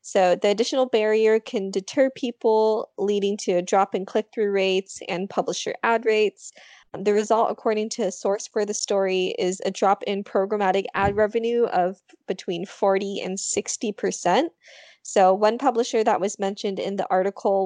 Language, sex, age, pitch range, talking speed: English, female, 20-39, 190-225 Hz, 165 wpm